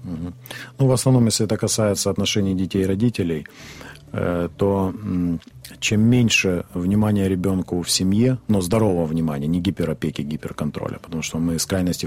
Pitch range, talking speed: 80-110 Hz, 140 wpm